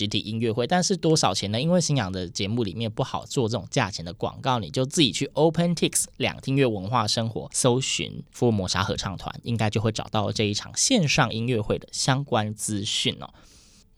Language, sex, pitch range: Chinese, male, 110-140 Hz